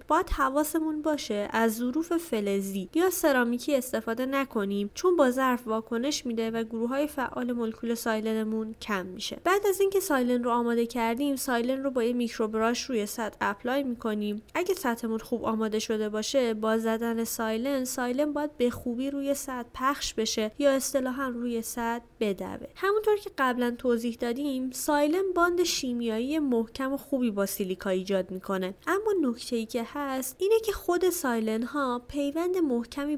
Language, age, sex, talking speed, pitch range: Persian, 20-39, female, 160 wpm, 225-280 Hz